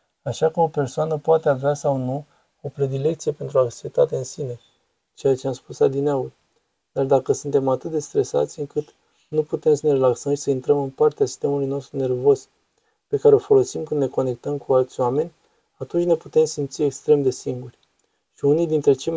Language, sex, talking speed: Romanian, male, 190 wpm